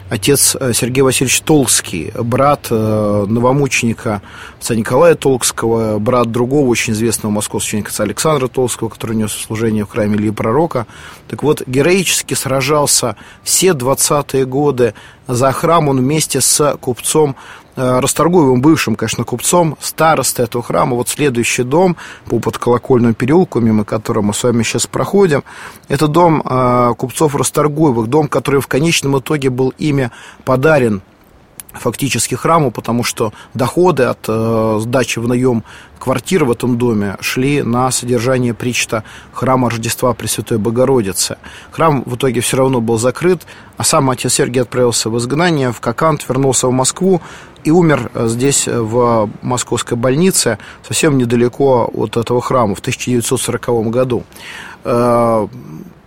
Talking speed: 135 wpm